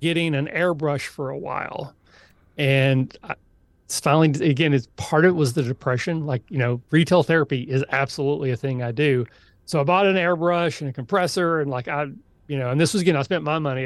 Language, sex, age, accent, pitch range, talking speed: English, male, 40-59, American, 130-160 Hz, 220 wpm